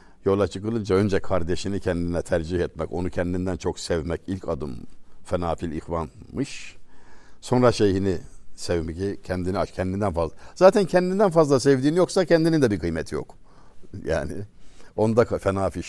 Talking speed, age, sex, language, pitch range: 130 wpm, 60-79, male, Turkish, 90-130 Hz